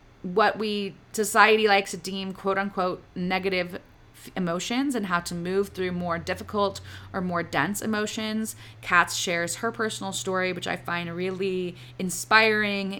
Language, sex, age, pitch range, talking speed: English, female, 30-49, 175-205 Hz, 150 wpm